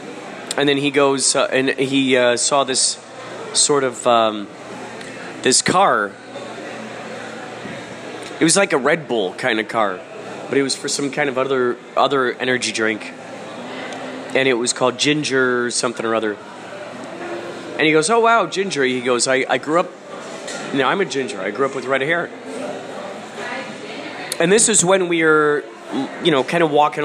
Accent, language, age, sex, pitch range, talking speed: American, English, 30-49, male, 130-165 Hz, 175 wpm